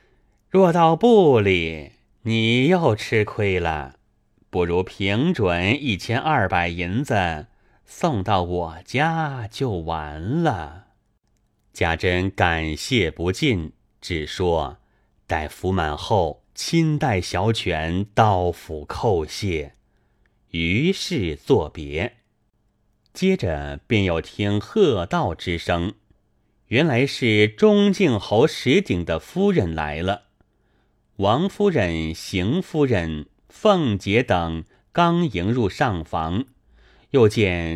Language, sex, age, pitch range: Chinese, male, 30-49, 85-125 Hz